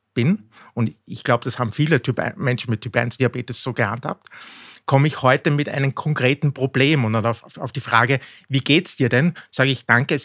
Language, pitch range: German, 120-150 Hz